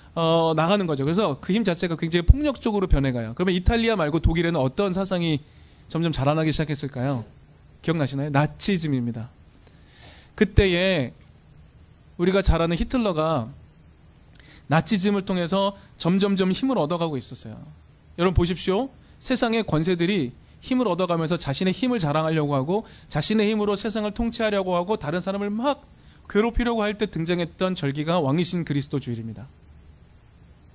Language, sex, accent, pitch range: Korean, male, native, 140-210 Hz